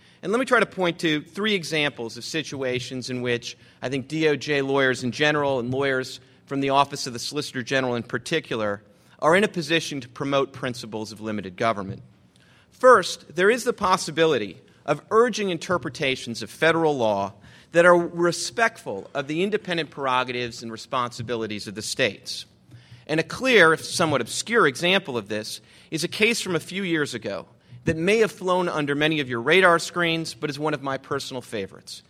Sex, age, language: male, 30-49, English